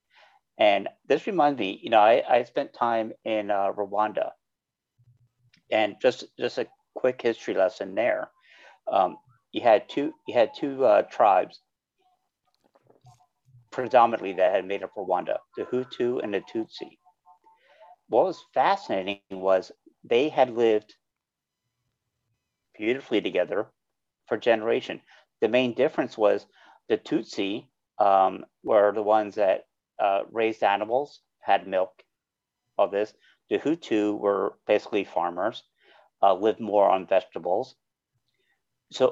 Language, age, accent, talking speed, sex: English, 50-69, American, 125 wpm, male